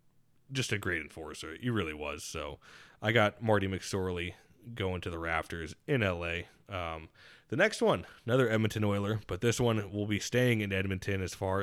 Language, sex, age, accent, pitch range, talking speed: English, male, 20-39, American, 95-115 Hz, 180 wpm